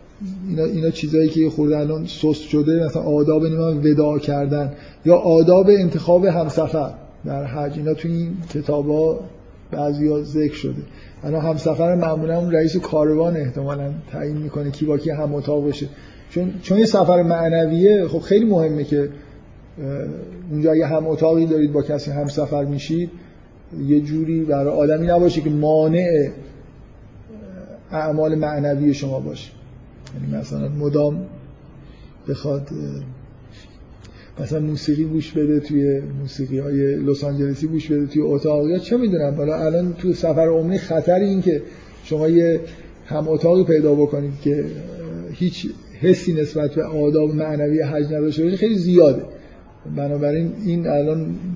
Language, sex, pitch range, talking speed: Persian, male, 145-165 Hz, 130 wpm